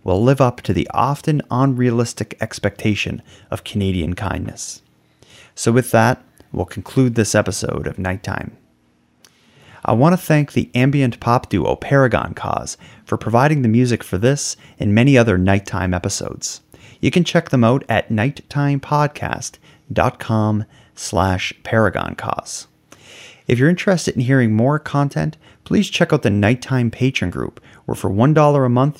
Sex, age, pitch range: male, 30-49, 100-135 Hz